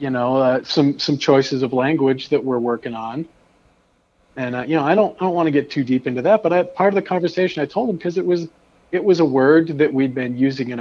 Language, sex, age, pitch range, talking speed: English, male, 40-59, 125-160 Hz, 265 wpm